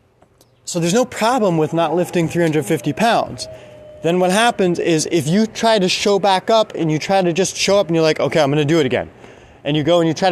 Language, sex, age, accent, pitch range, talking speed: English, male, 20-39, American, 160-190 Hz, 250 wpm